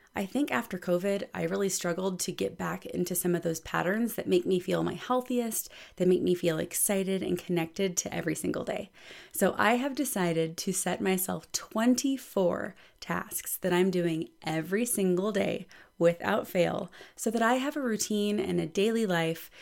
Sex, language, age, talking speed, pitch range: female, English, 30-49, 180 wpm, 165-210 Hz